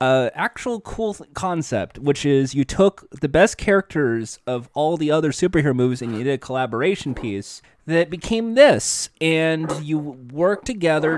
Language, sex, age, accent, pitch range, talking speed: English, male, 20-39, American, 130-175 Hz, 170 wpm